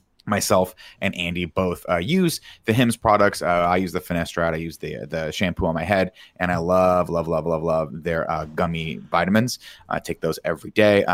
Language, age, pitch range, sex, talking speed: English, 30-49, 90-115 Hz, male, 205 wpm